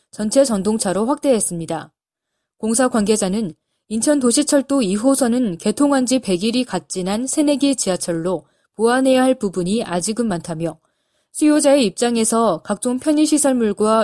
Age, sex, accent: 20-39, female, native